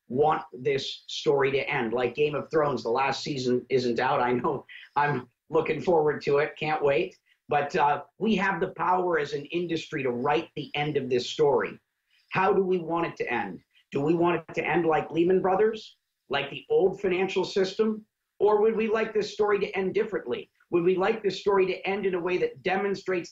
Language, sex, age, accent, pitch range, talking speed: English, male, 40-59, American, 145-190 Hz, 210 wpm